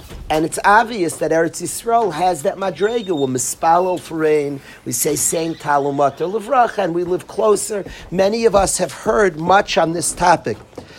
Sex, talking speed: male, 135 wpm